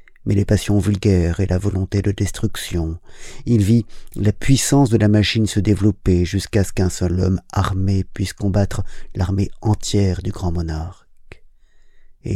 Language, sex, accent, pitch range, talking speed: French, male, French, 90-110 Hz, 155 wpm